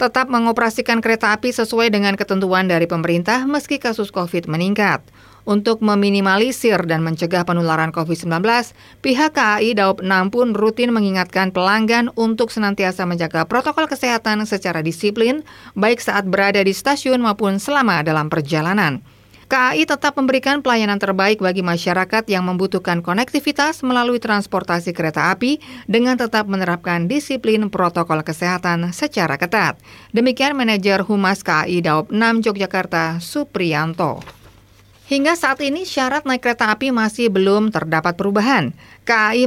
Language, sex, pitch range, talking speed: Indonesian, female, 175-240 Hz, 130 wpm